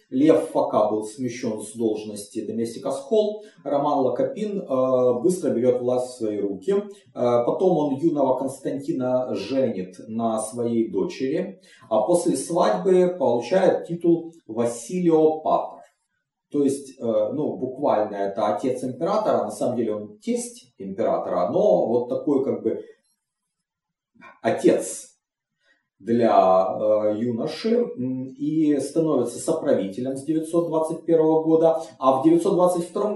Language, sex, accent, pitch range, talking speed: Russian, male, native, 115-170 Hz, 110 wpm